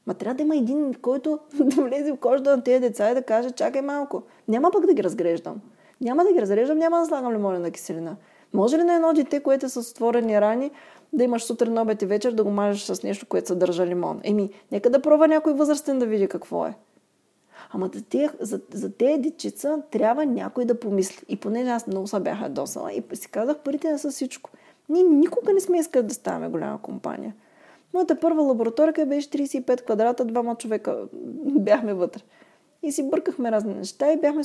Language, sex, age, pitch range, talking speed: Bulgarian, female, 20-39, 210-295 Hz, 200 wpm